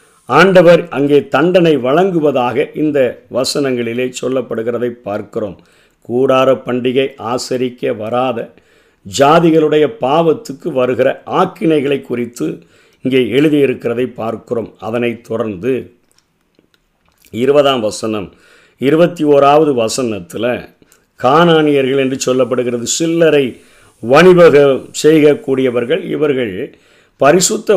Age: 50-69